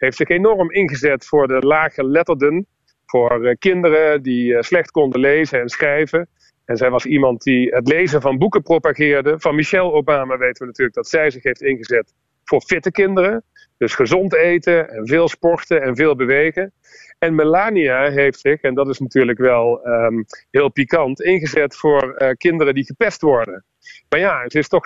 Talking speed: 175 wpm